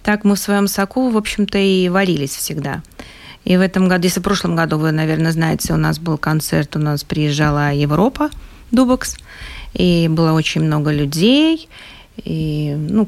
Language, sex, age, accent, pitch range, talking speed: Russian, female, 30-49, native, 175-235 Hz, 170 wpm